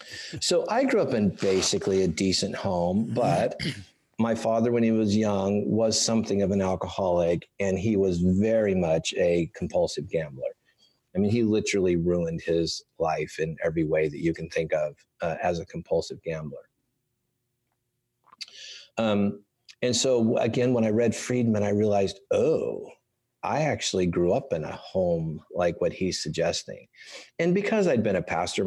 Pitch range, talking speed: 90-120 Hz, 160 wpm